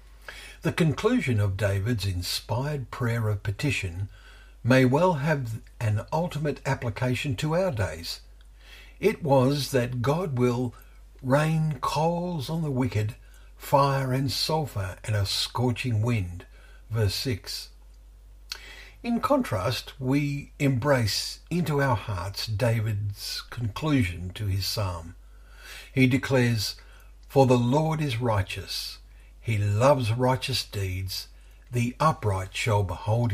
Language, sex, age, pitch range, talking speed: English, male, 60-79, 100-135 Hz, 115 wpm